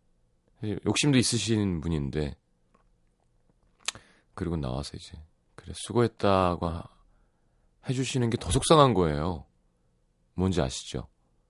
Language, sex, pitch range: Korean, male, 80-120 Hz